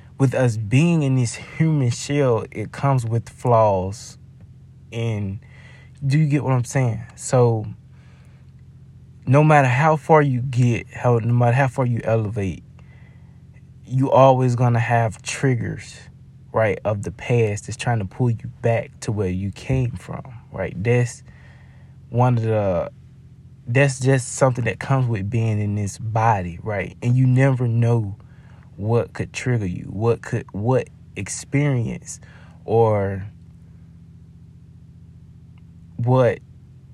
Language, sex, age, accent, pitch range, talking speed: English, male, 20-39, American, 110-130 Hz, 135 wpm